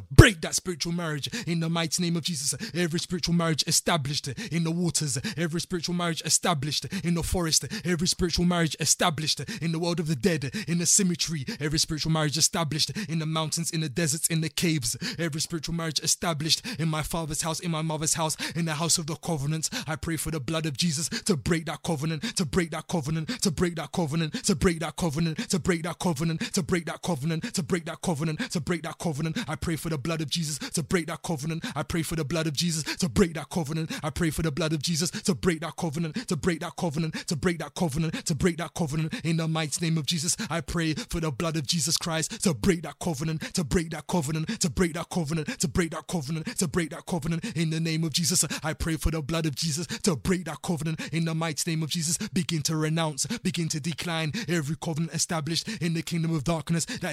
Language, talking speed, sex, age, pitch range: English, 235 wpm, male, 20-39, 160-175 Hz